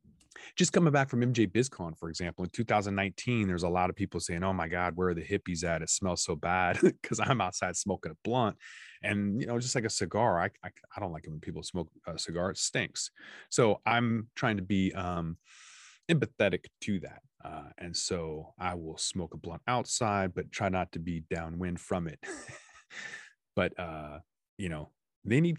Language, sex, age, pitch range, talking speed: English, male, 30-49, 85-115 Hz, 200 wpm